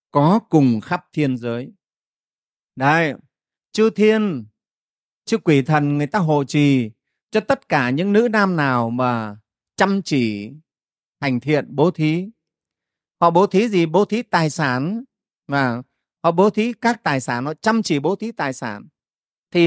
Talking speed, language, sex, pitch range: 160 wpm, Vietnamese, male, 135-200 Hz